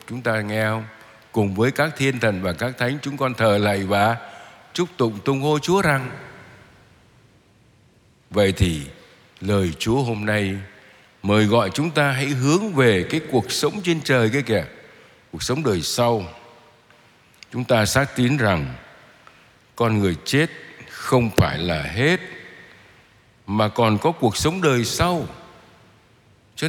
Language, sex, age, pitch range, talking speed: Vietnamese, male, 60-79, 105-145 Hz, 150 wpm